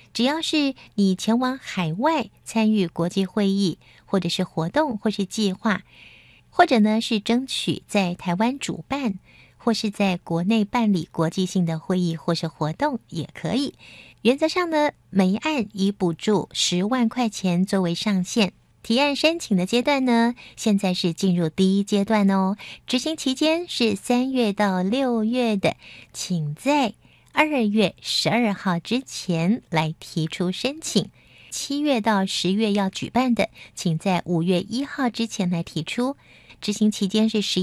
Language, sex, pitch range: Chinese, female, 185-245 Hz